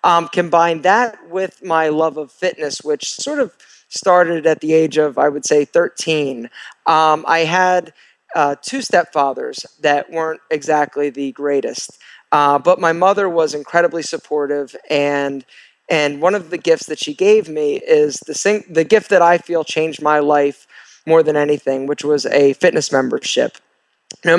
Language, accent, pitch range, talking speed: English, American, 145-180 Hz, 165 wpm